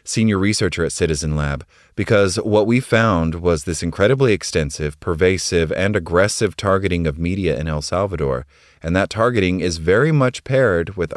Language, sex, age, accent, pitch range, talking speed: English, male, 30-49, American, 80-100 Hz, 160 wpm